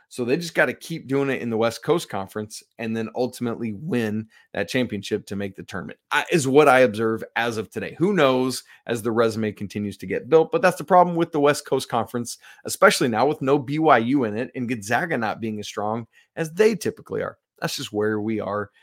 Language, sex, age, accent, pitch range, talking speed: English, male, 30-49, American, 115-155 Hz, 225 wpm